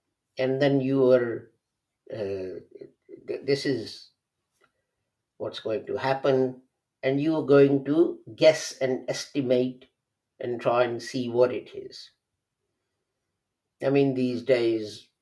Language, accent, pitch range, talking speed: English, Indian, 105-135 Hz, 120 wpm